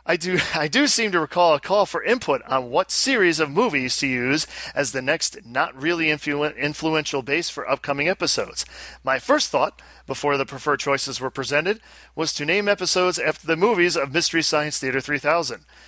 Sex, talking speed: male, 180 wpm